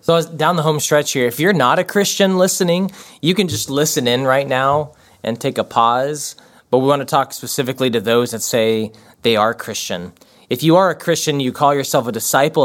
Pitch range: 120-155 Hz